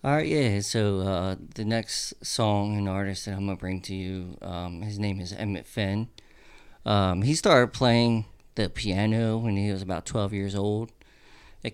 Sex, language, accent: male, English, American